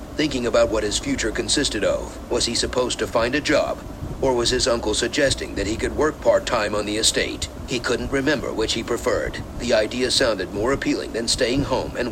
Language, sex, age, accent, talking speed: English, male, 50-69, American, 210 wpm